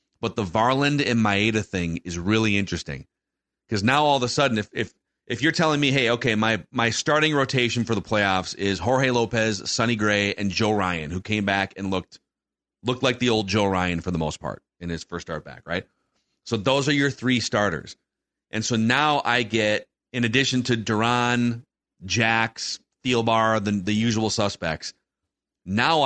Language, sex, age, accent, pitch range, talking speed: English, male, 30-49, American, 105-130 Hz, 185 wpm